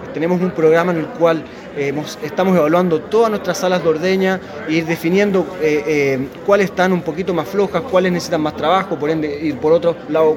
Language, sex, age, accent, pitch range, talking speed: Spanish, male, 20-39, Argentinian, 155-195 Hz, 205 wpm